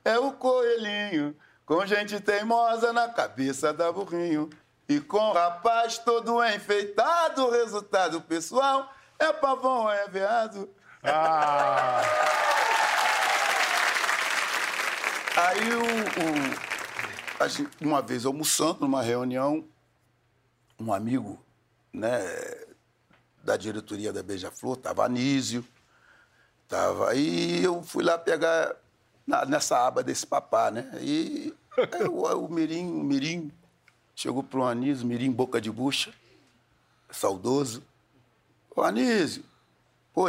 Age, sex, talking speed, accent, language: 60-79, male, 110 wpm, Brazilian, Portuguese